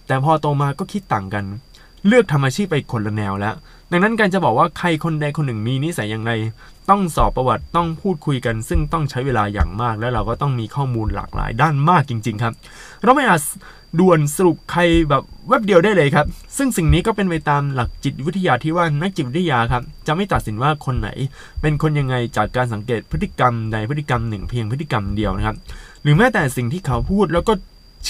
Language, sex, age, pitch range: Thai, male, 20-39, 115-165 Hz